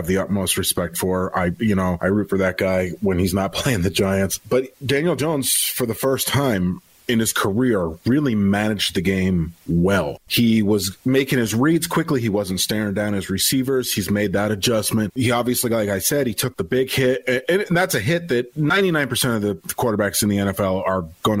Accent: American